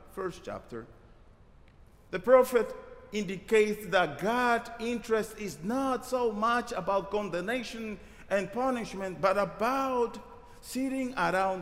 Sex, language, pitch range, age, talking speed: male, English, 150-220 Hz, 50-69, 105 wpm